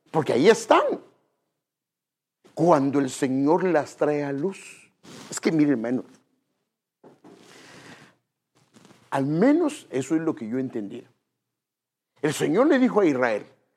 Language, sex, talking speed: English, male, 120 wpm